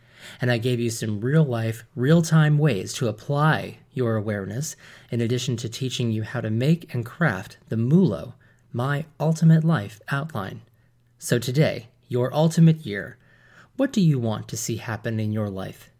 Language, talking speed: English, 160 wpm